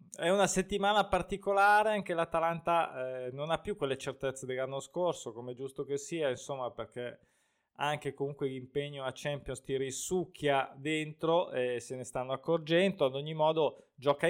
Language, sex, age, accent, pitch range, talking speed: Italian, male, 20-39, native, 130-170 Hz, 155 wpm